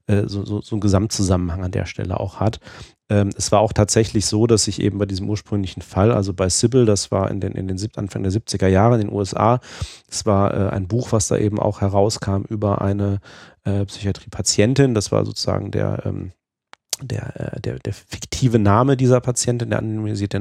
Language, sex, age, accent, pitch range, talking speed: German, male, 30-49, German, 100-110 Hz, 195 wpm